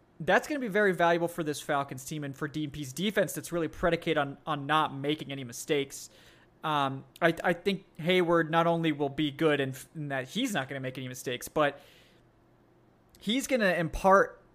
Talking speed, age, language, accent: 200 wpm, 20-39, English, American